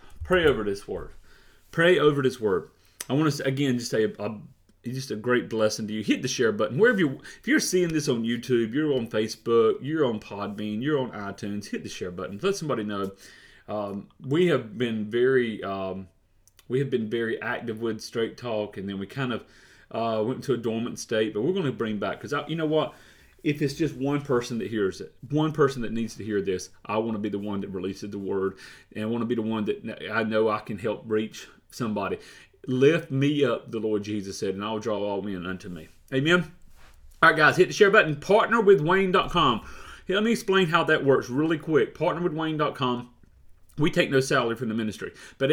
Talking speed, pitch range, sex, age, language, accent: 215 wpm, 105-150 Hz, male, 30-49, English, American